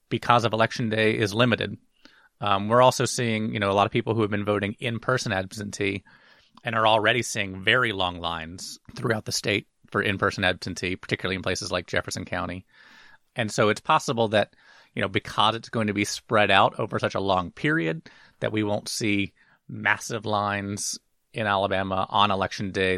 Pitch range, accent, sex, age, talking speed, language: 100-120 Hz, American, male, 30-49, 185 wpm, English